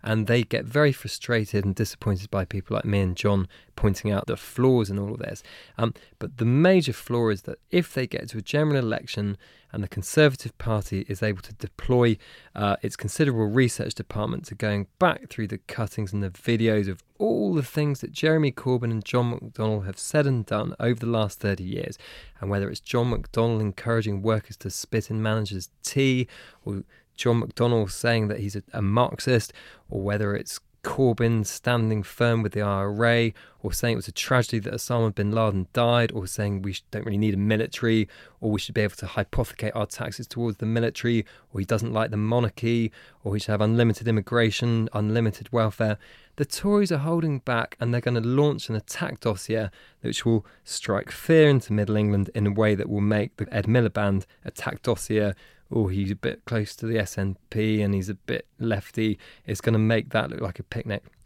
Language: English